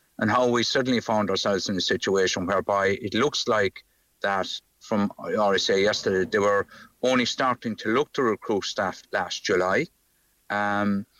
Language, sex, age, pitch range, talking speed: English, male, 50-69, 100-120 Hz, 165 wpm